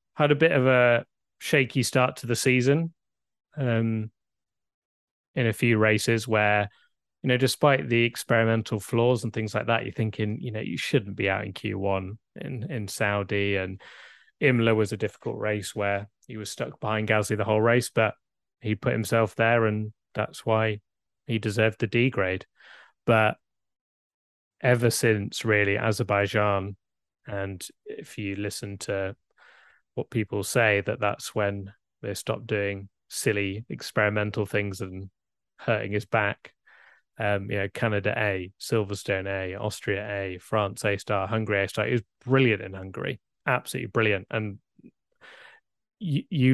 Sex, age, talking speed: male, 20-39, 145 wpm